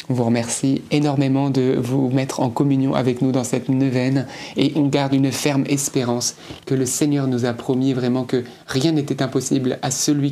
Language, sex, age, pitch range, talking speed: French, male, 30-49, 125-145 Hz, 190 wpm